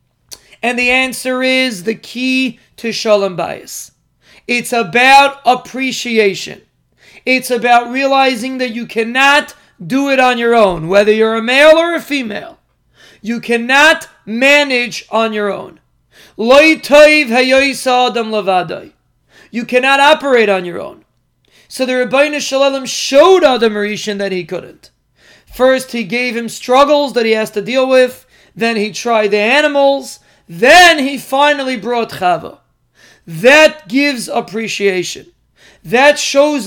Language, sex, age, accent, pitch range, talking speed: English, male, 40-59, American, 225-270 Hz, 130 wpm